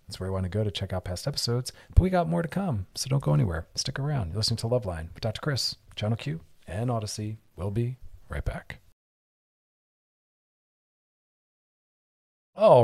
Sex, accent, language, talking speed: male, American, English, 180 wpm